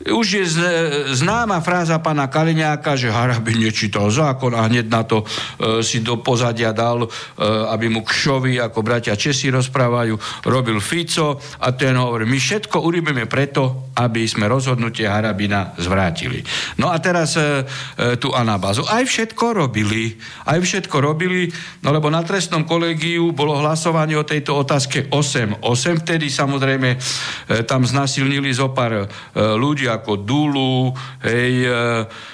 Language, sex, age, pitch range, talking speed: Slovak, male, 60-79, 115-160 Hz, 145 wpm